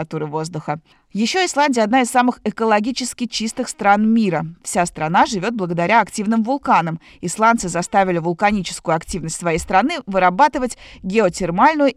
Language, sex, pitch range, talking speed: Russian, female, 175-235 Hz, 120 wpm